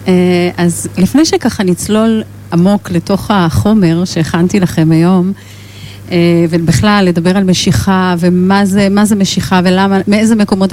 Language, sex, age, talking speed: Hebrew, female, 30-49, 130 wpm